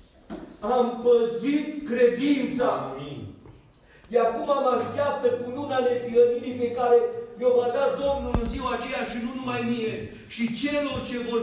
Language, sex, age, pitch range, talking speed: Romanian, male, 40-59, 205-255 Hz, 145 wpm